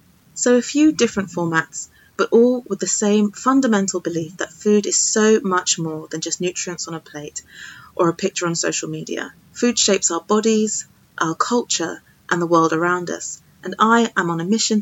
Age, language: 30-49, English